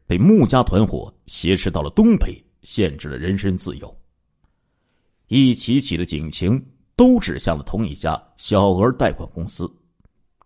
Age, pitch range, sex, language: 50-69, 85-135 Hz, male, Chinese